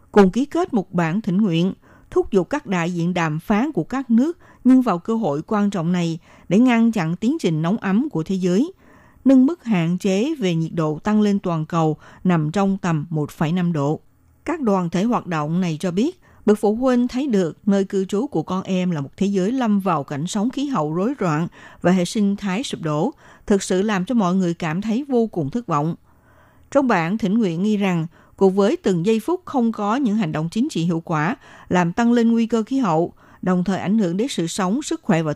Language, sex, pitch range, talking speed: Vietnamese, female, 170-225 Hz, 230 wpm